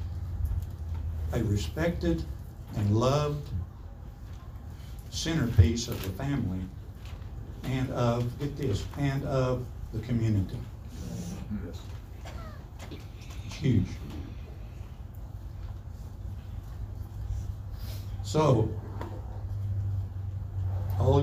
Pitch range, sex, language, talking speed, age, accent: 95-120 Hz, male, English, 55 wpm, 60-79, American